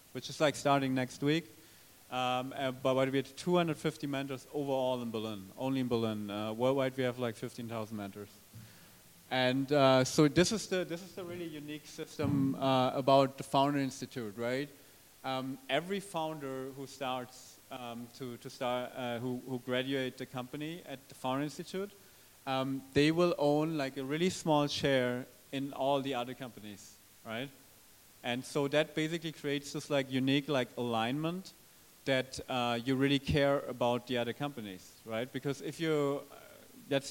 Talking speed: 165 wpm